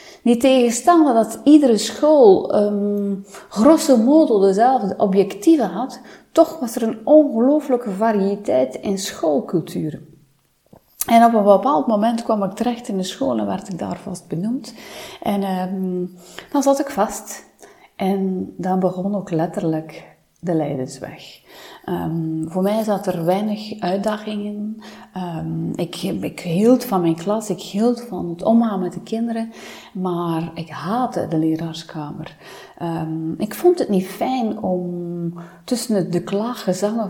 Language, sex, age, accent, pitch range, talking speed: Dutch, female, 30-49, Dutch, 170-225 Hz, 140 wpm